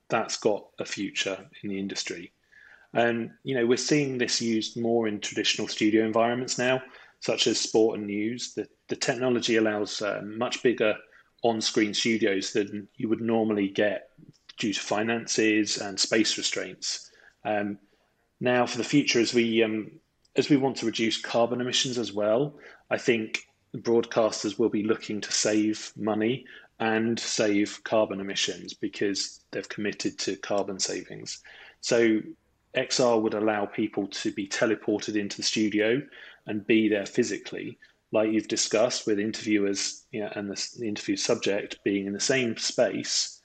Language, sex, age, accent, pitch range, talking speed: English, male, 30-49, British, 105-115 Hz, 155 wpm